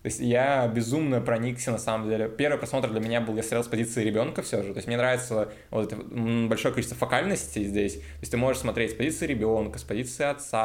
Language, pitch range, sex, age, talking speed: Russian, 105-125 Hz, male, 20-39, 225 wpm